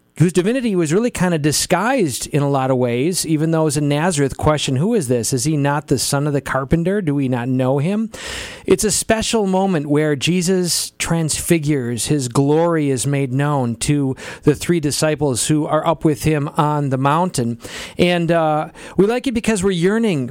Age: 40-59